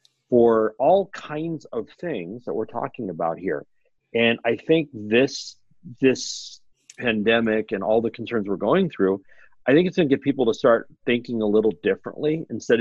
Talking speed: 170 wpm